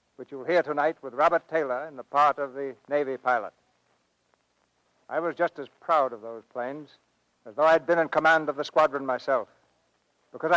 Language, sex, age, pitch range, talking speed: English, male, 60-79, 130-165 Hz, 185 wpm